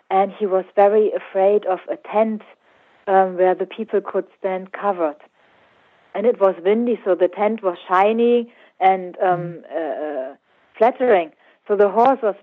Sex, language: female, English